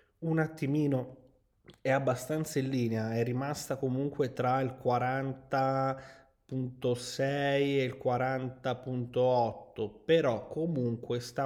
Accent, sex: native, male